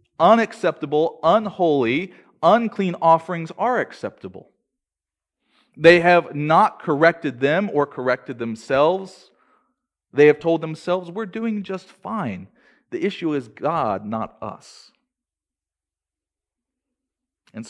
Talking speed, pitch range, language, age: 100 wpm, 140-200 Hz, English, 40-59